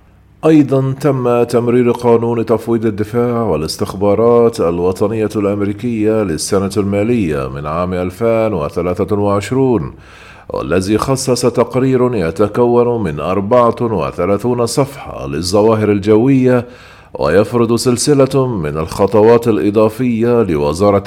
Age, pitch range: 40-59, 100-120 Hz